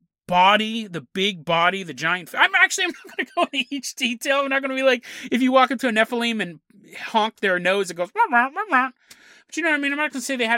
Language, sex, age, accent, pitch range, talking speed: English, male, 30-49, American, 180-255 Hz, 290 wpm